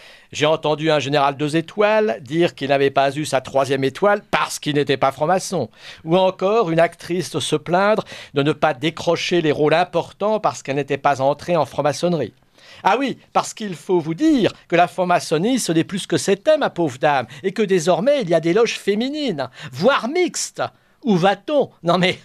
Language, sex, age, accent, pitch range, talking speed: French, male, 50-69, French, 140-180 Hz, 195 wpm